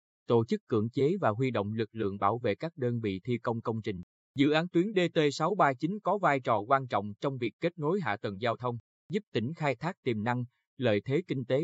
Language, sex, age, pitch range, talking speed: Vietnamese, male, 20-39, 115-155 Hz, 230 wpm